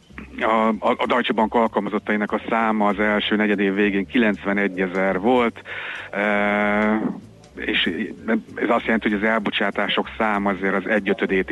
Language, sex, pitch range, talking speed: Hungarian, male, 100-110 Hz, 140 wpm